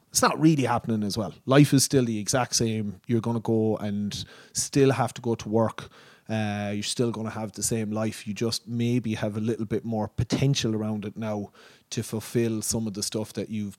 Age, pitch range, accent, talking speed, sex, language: 30-49, 110-160 Hz, Irish, 225 wpm, male, English